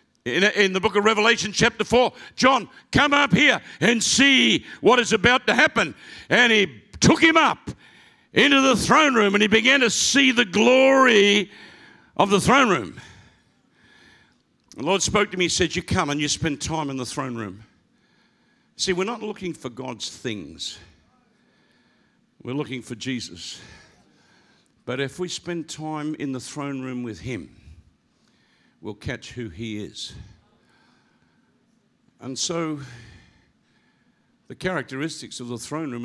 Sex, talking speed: male, 150 wpm